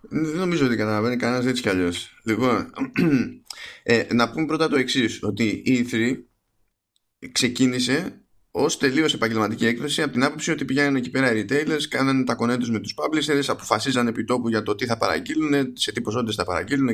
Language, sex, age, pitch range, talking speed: Greek, male, 20-39, 105-140 Hz, 175 wpm